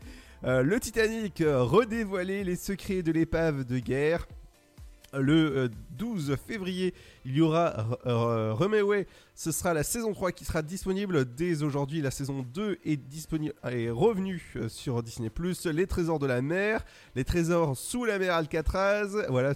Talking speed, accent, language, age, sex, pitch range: 155 wpm, French, French, 30-49, male, 130-185 Hz